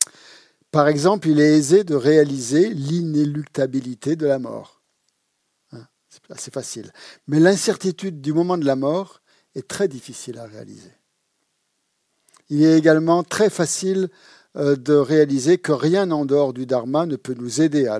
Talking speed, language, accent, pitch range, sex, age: 145 wpm, French, French, 135-175 Hz, male, 50-69